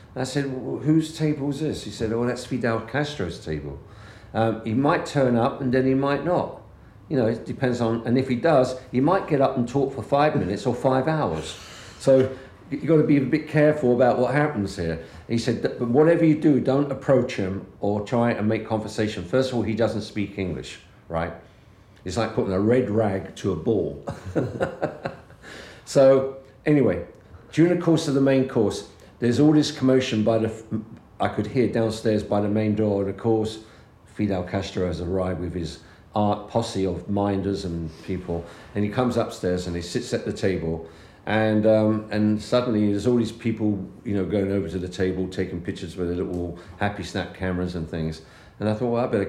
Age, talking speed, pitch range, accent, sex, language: 50-69, 200 wpm, 95-125 Hz, British, male, English